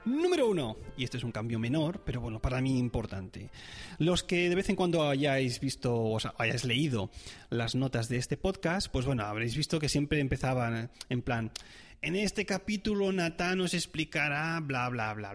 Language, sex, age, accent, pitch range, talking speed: Spanish, male, 30-49, Spanish, 115-165 Hz, 190 wpm